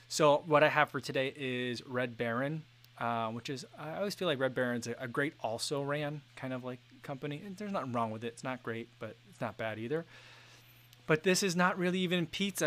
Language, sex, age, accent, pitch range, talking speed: English, male, 20-39, American, 120-140 Hz, 215 wpm